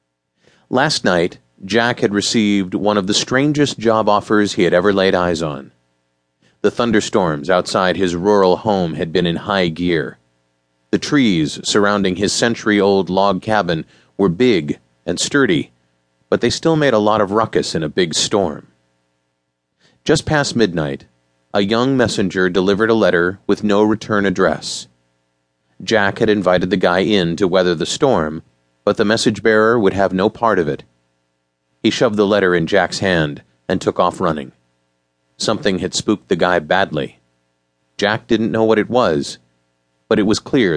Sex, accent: male, American